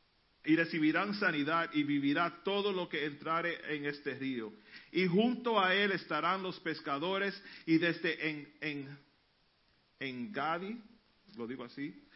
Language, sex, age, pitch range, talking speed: Spanish, male, 50-69, 145-190 Hz, 135 wpm